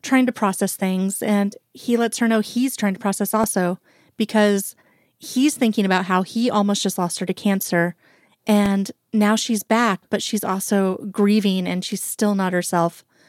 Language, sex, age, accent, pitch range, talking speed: English, female, 30-49, American, 190-225 Hz, 175 wpm